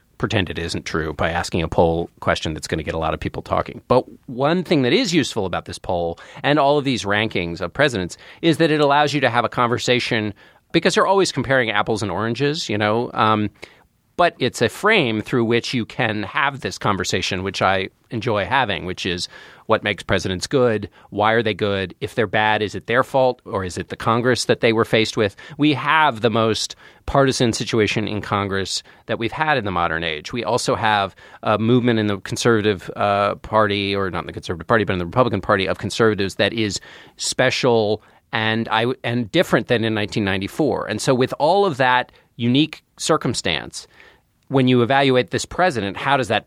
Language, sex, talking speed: English, male, 210 wpm